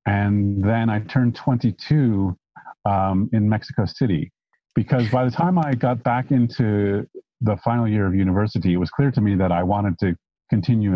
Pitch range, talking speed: 90-120 Hz, 175 wpm